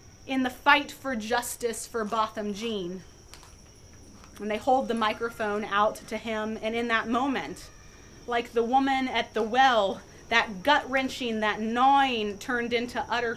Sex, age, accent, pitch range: female, 30-49, American, 220-265 Hz